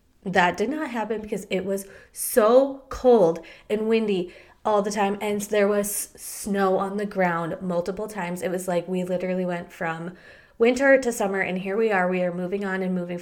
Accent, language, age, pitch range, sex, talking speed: American, English, 20-39, 190-230 Hz, female, 195 wpm